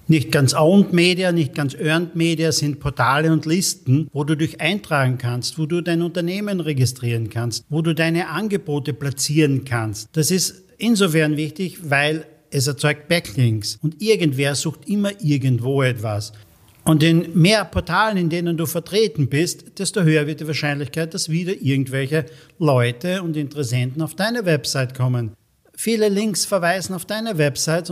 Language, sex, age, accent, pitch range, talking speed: German, male, 50-69, German, 140-175 Hz, 155 wpm